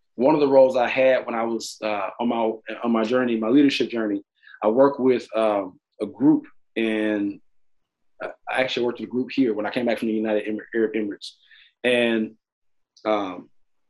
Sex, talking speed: male, 190 wpm